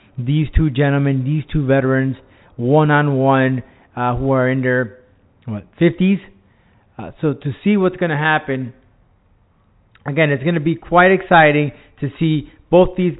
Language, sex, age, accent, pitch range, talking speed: English, male, 30-49, American, 135-170 Hz, 145 wpm